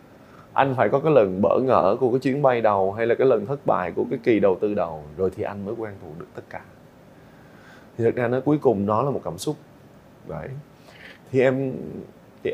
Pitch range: 110-150 Hz